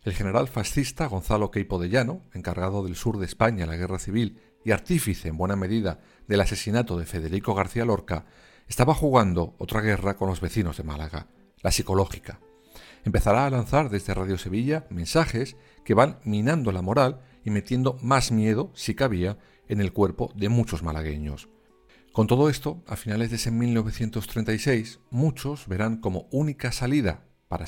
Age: 50-69